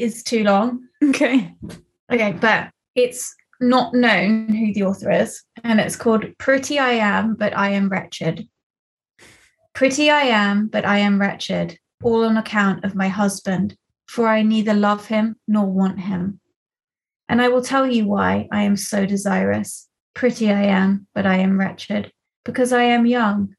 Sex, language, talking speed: female, English, 165 wpm